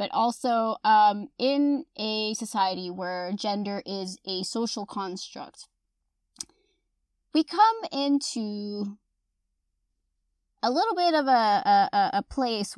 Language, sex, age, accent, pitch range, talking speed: English, female, 20-39, American, 195-255 Hz, 105 wpm